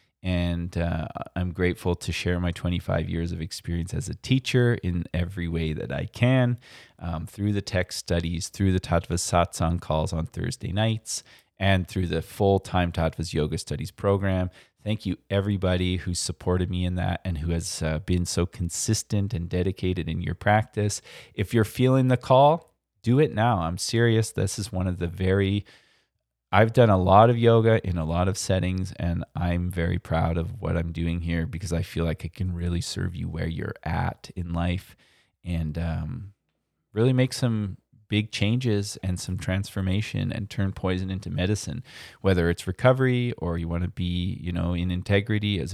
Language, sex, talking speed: English, male, 180 wpm